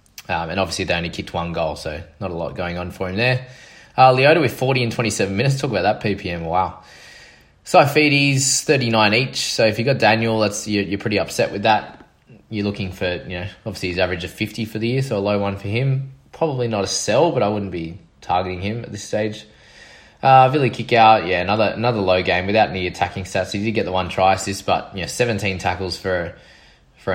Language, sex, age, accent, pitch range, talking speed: English, male, 20-39, Australian, 95-120 Hz, 230 wpm